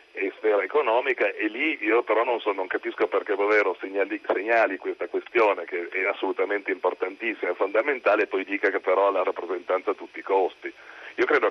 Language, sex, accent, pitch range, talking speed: Italian, male, native, 345-460 Hz, 185 wpm